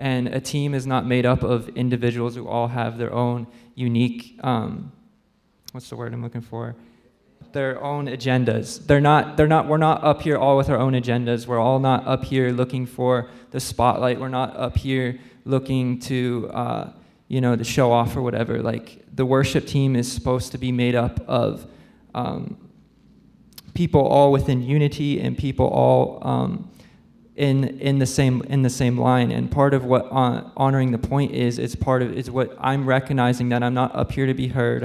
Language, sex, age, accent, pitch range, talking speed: English, male, 20-39, American, 120-130 Hz, 195 wpm